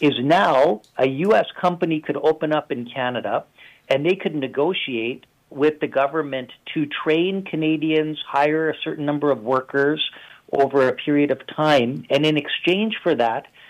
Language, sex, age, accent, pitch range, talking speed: English, male, 50-69, American, 130-155 Hz, 160 wpm